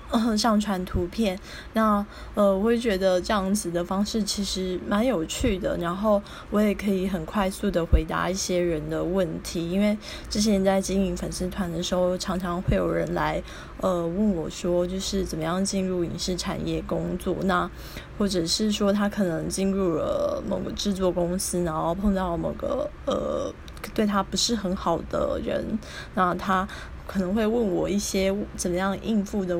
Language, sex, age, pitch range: Chinese, female, 20-39, 180-205 Hz